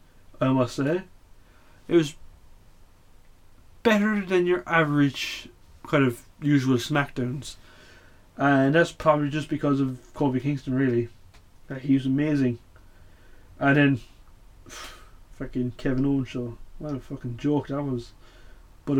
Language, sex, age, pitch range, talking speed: English, male, 20-39, 115-150 Hz, 125 wpm